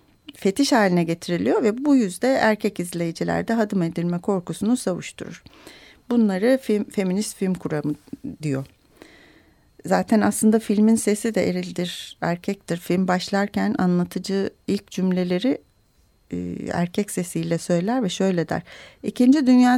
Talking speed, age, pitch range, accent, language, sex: 120 wpm, 40-59, 175-220 Hz, native, Turkish, female